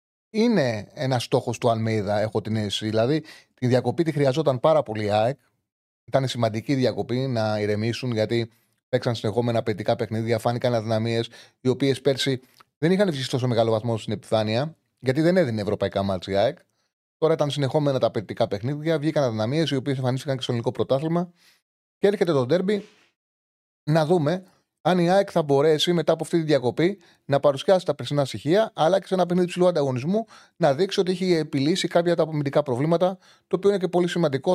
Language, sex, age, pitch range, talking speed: Greek, male, 30-49, 115-170 Hz, 185 wpm